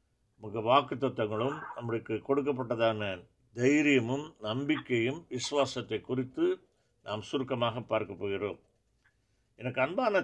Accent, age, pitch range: native, 60-79, 115-140 Hz